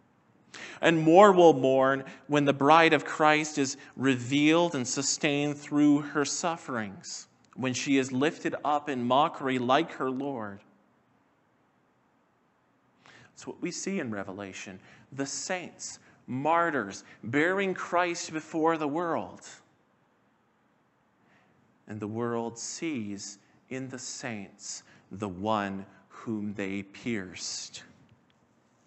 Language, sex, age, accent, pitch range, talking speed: English, male, 40-59, American, 100-135 Hz, 110 wpm